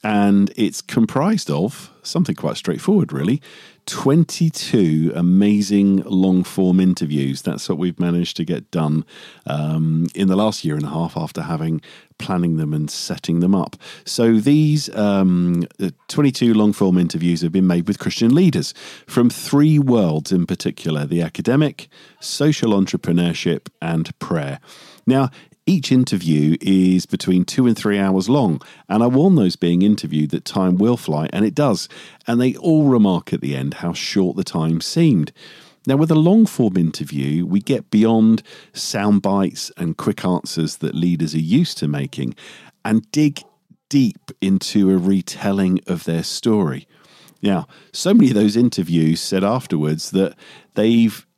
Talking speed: 155 wpm